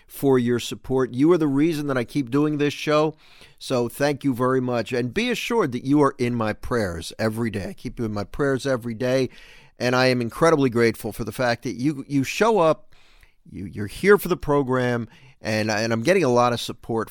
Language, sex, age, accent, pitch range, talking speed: English, male, 50-69, American, 115-135 Hz, 225 wpm